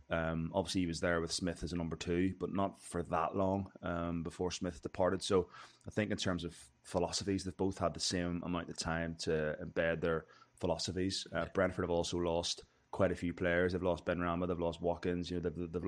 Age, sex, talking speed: 20-39, male, 215 wpm